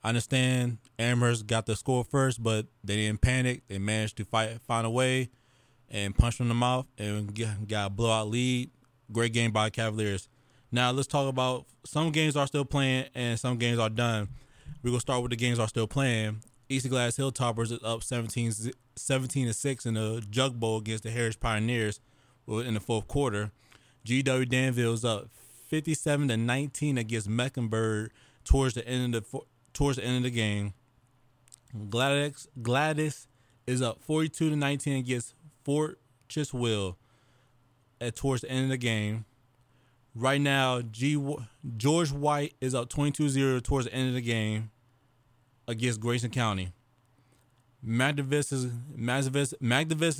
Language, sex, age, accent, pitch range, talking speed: English, male, 20-39, American, 115-130 Hz, 155 wpm